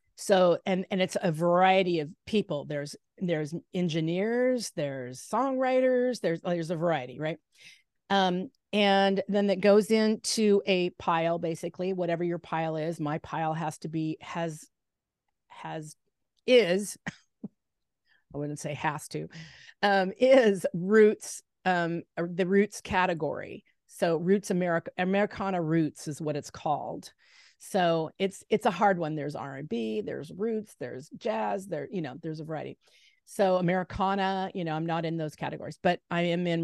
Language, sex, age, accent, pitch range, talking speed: English, female, 40-59, American, 165-200 Hz, 150 wpm